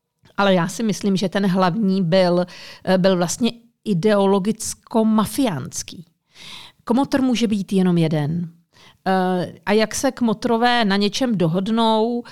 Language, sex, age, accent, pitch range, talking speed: Czech, female, 40-59, native, 180-230 Hz, 110 wpm